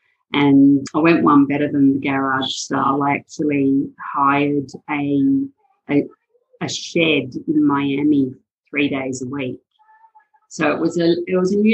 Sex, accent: female, Australian